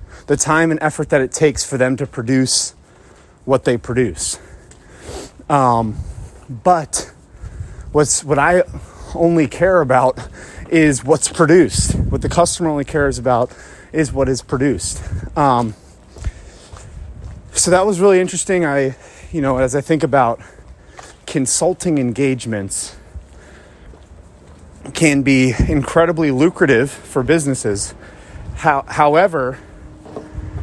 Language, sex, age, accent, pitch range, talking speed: English, male, 30-49, American, 95-155 Hz, 115 wpm